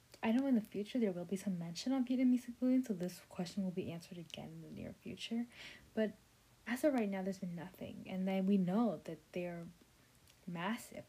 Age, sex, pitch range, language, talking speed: 10-29, female, 180-225 Hz, English, 210 wpm